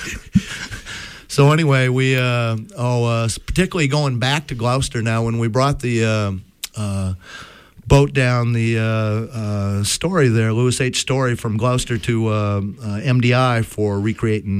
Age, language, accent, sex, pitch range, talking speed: 50-69, English, American, male, 105-135 Hz, 150 wpm